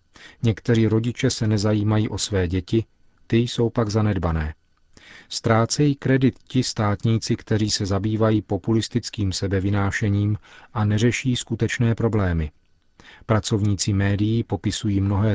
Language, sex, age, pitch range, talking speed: Czech, male, 40-59, 100-115 Hz, 110 wpm